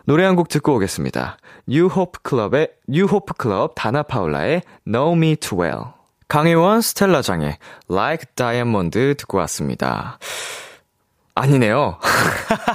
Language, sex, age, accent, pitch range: Korean, male, 20-39, native, 110-180 Hz